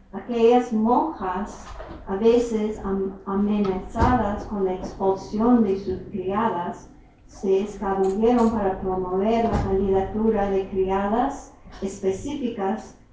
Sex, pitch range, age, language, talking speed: female, 185-225 Hz, 50-69, English, 90 wpm